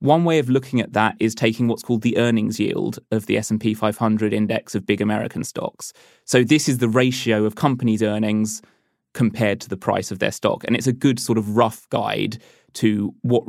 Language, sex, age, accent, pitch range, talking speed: English, male, 20-39, British, 110-130 Hz, 210 wpm